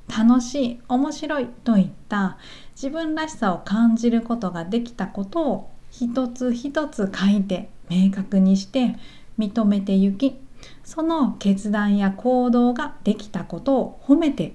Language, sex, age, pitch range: Japanese, female, 40-59, 190-250 Hz